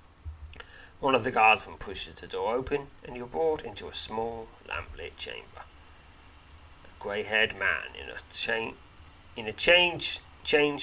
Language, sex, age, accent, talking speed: English, male, 40-59, British, 155 wpm